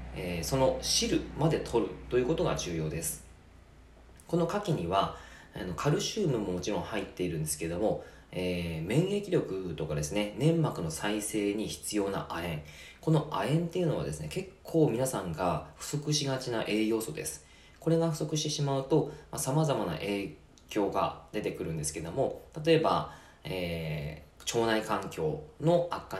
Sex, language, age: male, Japanese, 20-39